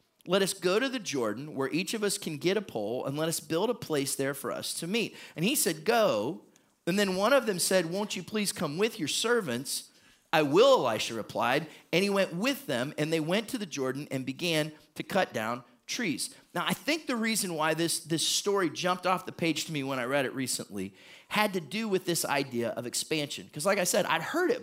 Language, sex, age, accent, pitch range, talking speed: English, male, 30-49, American, 145-195 Hz, 240 wpm